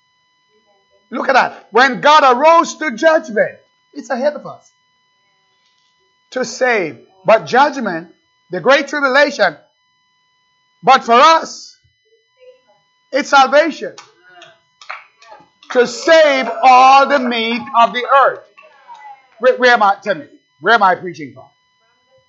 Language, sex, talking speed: English, male, 115 wpm